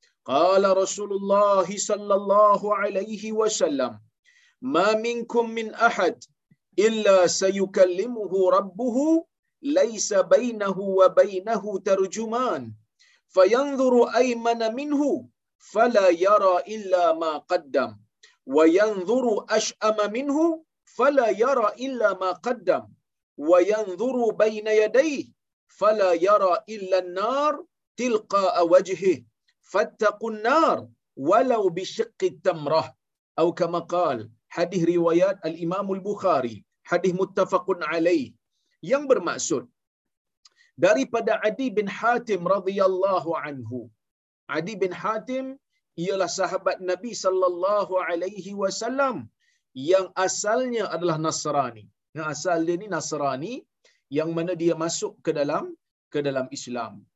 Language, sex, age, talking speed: Malayalam, male, 50-69, 100 wpm